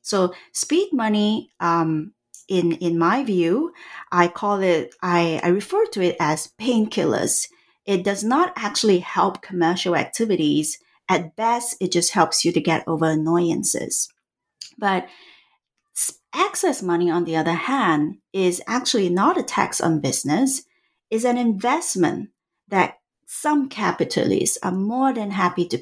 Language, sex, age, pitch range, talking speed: English, female, 40-59, 170-230 Hz, 140 wpm